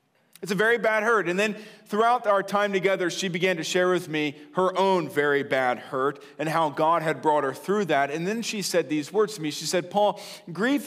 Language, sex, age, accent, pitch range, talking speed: English, male, 40-59, American, 180-220 Hz, 230 wpm